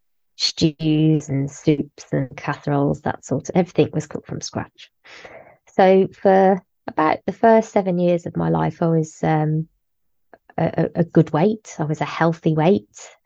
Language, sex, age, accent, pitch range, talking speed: English, female, 20-39, British, 150-180 Hz, 160 wpm